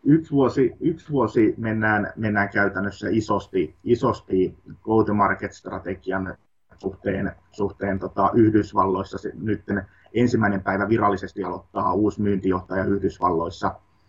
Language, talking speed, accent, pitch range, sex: Finnish, 95 wpm, native, 95-110 Hz, male